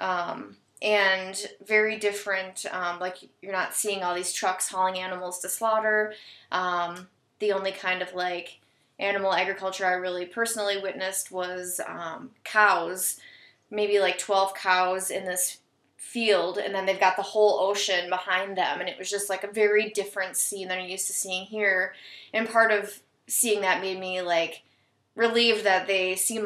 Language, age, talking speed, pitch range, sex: English, 20-39, 170 wpm, 185-205 Hz, female